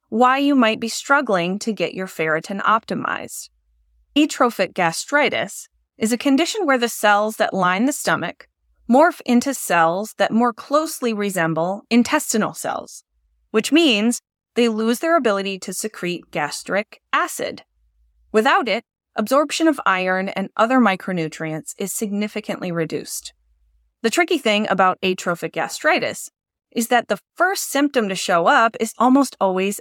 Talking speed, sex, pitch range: 140 wpm, female, 185-255 Hz